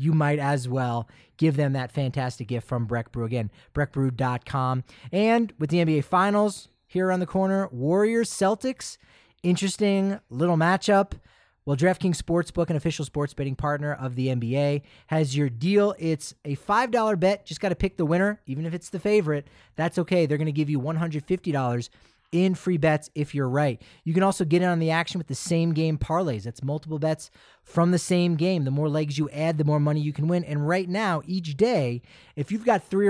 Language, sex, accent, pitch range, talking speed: English, male, American, 140-180 Hz, 205 wpm